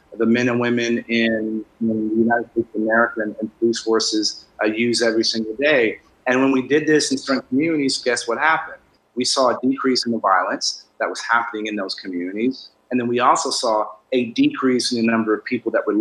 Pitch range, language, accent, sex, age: 110-125 Hz, Korean, American, male, 30-49